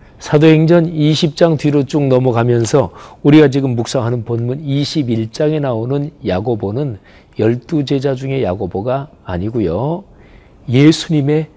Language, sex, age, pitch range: Korean, male, 40-59, 100-150 Hz